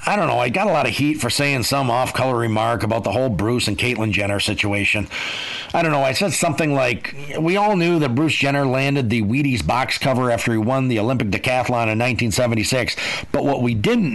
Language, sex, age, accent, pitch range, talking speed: English, male, 50-69, American, 115-155 Hz, 220 wpm